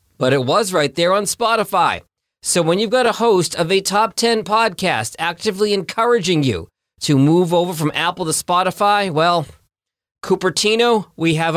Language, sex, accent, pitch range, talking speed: English, male, American, 135-180 Hz, 165 wpm